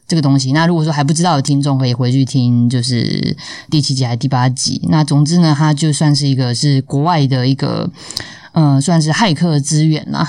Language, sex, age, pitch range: Chinese, female, 20-39, 135-160 Hz